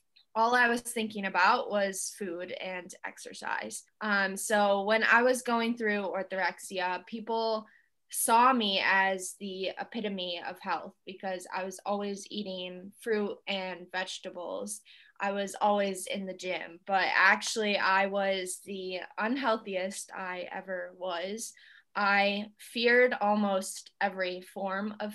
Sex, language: female, English